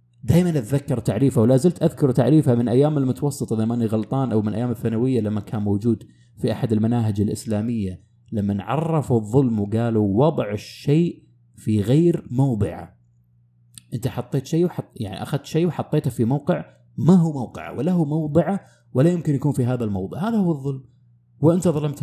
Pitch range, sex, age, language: 110-145 Hz, male, 30-49, Arabic